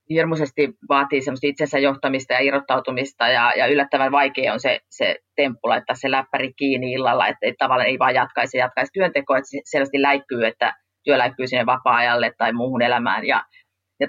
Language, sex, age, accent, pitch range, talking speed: Finnish, female, 30-49, native, 125-150 Hz, 175 wpm